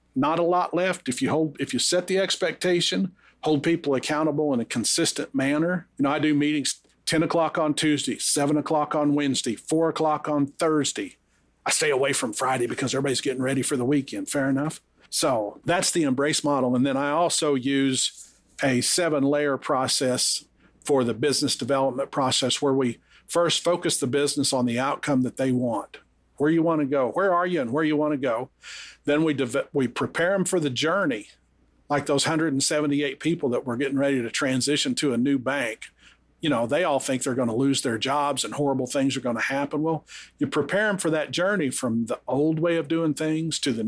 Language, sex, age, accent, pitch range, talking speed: English, male, 50-69, American, 135-155 Hz, 205 wpm